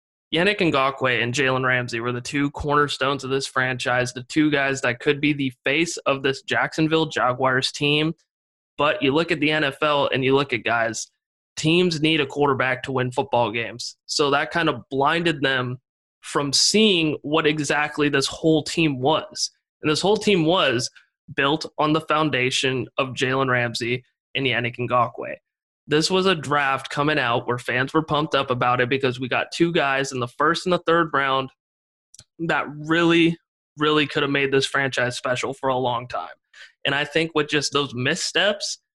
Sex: male